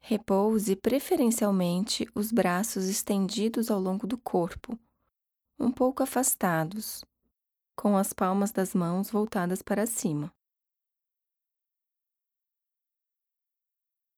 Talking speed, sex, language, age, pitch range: 85 wpm, female, Portuguese, 20-39, 195-235 Hz